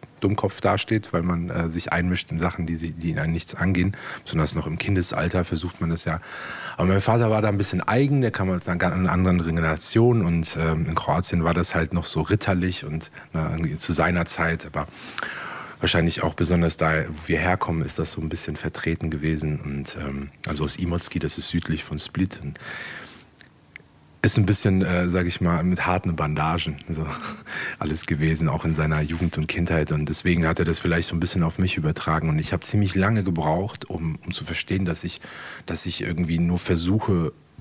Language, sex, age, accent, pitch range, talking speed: German, male, 40-59, German, 80-90 Hz, 205 wpm